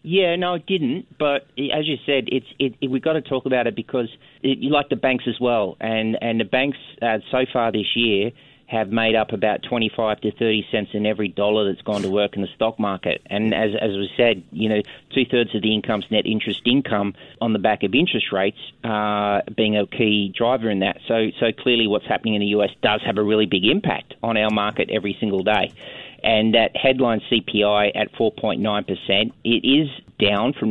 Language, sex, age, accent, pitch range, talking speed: English, male, 30-49, Australian, 105-125 Hz, 215 wpm